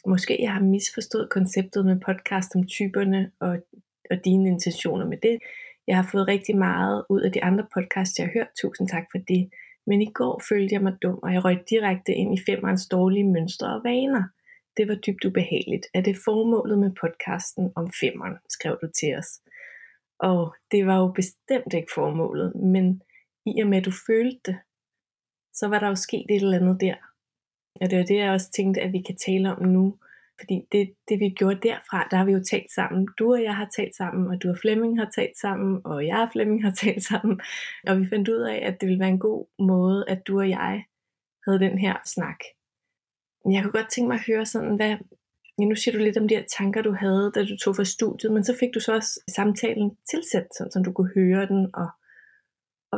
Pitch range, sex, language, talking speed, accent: 185-215 Hz, female, Danish, 220 wpm, native